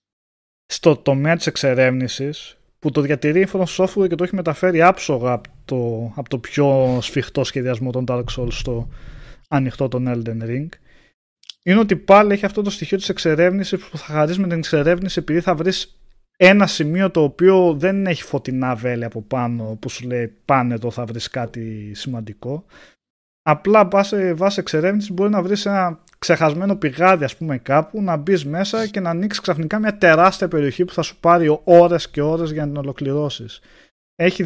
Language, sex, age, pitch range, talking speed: Greek, male, 20-39, 125-185 Hz, 175 wpm